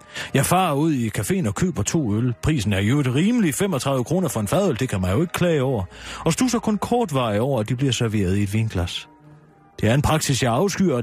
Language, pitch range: Danish, 105-160 Hz